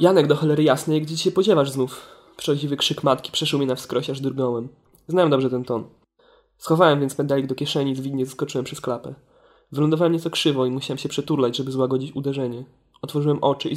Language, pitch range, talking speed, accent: Polish, 130-150 Hz, 190 wpm, native